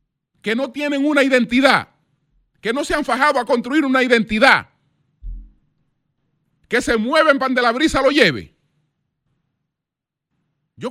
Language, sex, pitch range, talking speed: Spanish, male, 155-255 Hz, 130 wpm